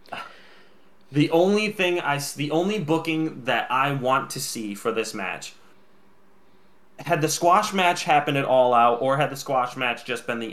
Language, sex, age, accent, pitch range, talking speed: English, male, 20-39, American, 130-170 Hz, 180 wpm